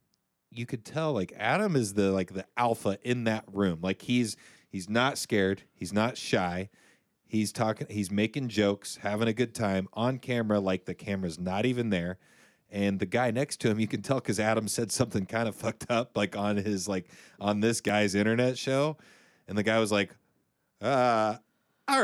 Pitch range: 95-120 Hz